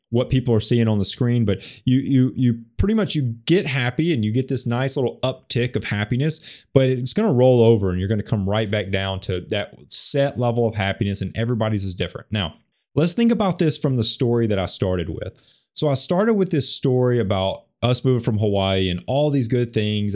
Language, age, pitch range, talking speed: English, 20-39, 105-140 Hz, 230 wpm